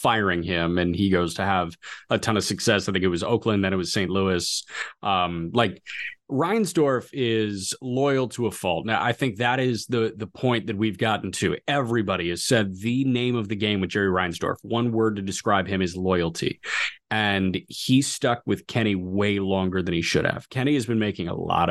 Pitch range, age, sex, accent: 95-125 Hz, 30-49, male, American